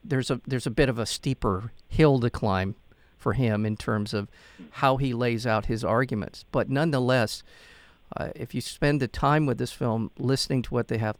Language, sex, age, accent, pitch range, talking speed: English, male, 50-69, American, 115-140 Hz, 205 wpm